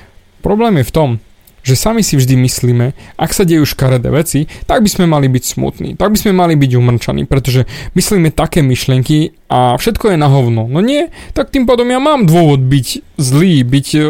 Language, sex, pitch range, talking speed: Slovak, male, 140-195 Hz, 195 wpm